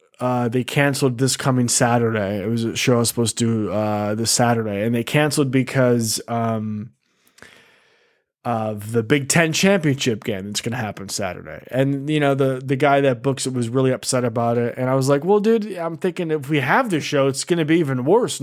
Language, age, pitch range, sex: English, 20-39, 120-165 Hz, male